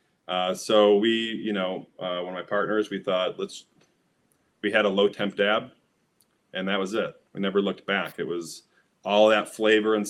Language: English